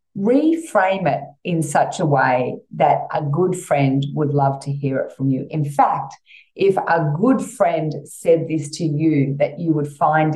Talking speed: 180 wpm